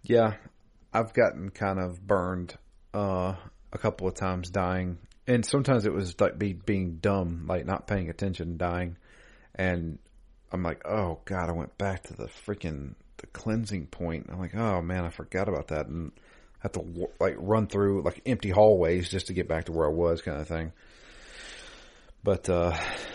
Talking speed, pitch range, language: 180 wpm, 85-100 Hz, English